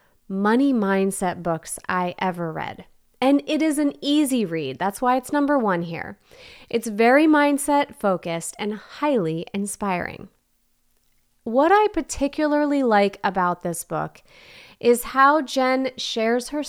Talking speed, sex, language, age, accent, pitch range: 135 wpm, female, English, 30-49, American, 190-265 Hz